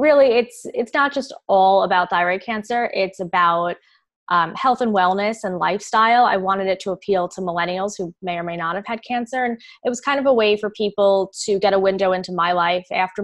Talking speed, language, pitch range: 220 wpm, English, 180-215 Hz